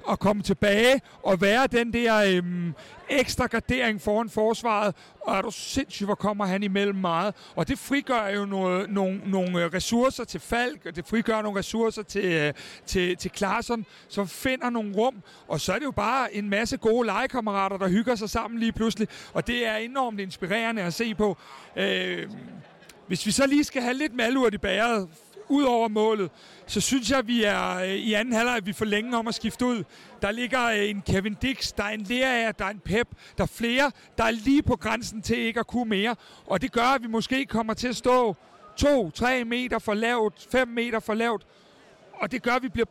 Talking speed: 210 wpm